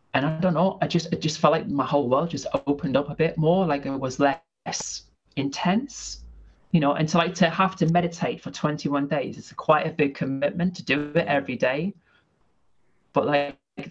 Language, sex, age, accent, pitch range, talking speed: English, male, 30-49, British, 120-160 Hz, 205 wpm